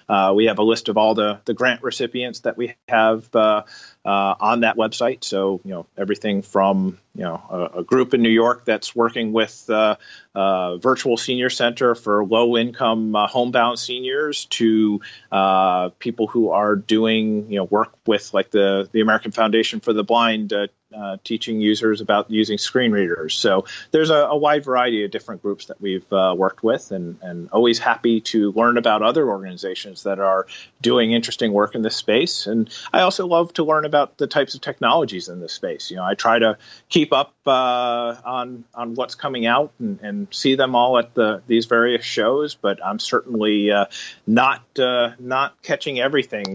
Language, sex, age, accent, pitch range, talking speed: English, male, 30-49, American, 105-120 Hz, 190 wpm